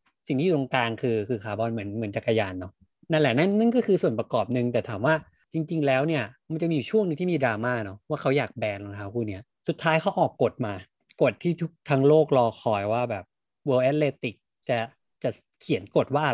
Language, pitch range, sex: Thai, 115-155 Hz, male